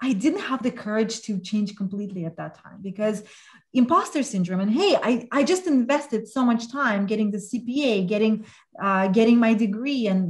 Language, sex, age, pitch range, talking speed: English, female, 30-49, 210-265 Hz, 185 wpm